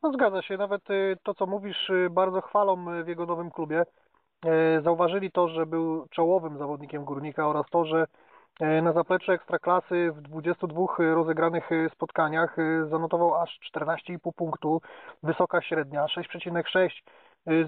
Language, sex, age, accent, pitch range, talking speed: Polish, male, 30-49, native, 165-195 Hz, 120 wpm